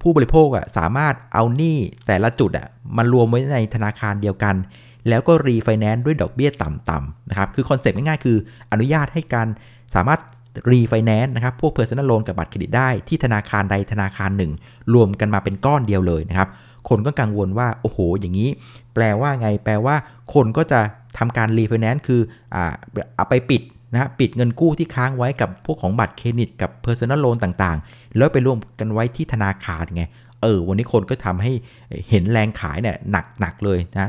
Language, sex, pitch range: Thai, male, 100-125 Hz